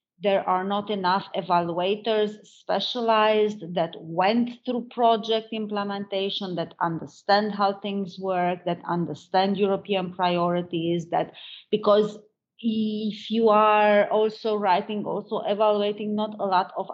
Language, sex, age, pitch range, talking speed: English, female, 30-49, 180-210 Hz, 115 wpm